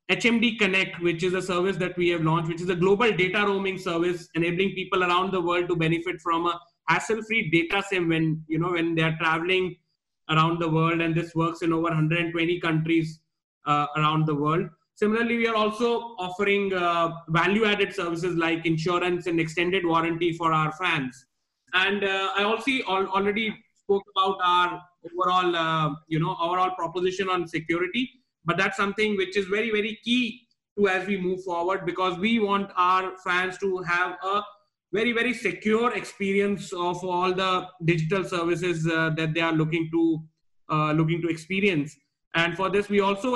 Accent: Indian